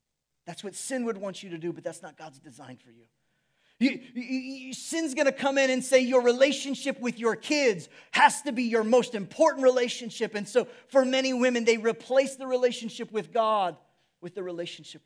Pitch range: 200-245 Hz